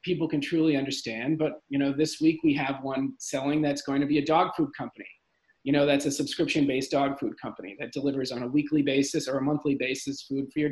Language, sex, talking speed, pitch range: English, male, 240 wpm, 135-155 Hz